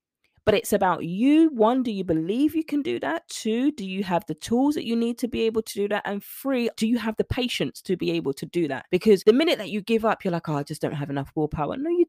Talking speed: 290 wpm